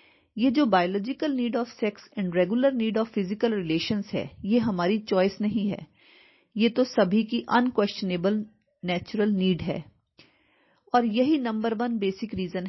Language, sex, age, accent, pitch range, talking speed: Hindi, female, 40-59, native, 190-245 Hz, 120 wpm